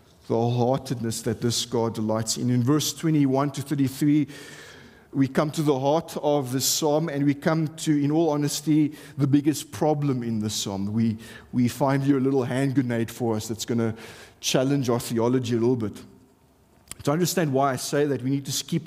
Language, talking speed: English, 195 wpm